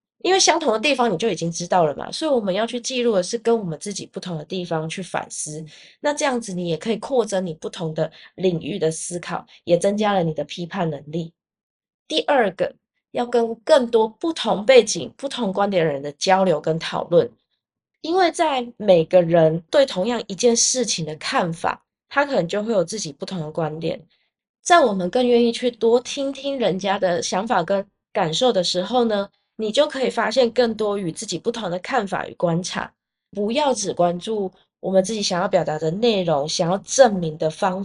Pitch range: 175-245 Hz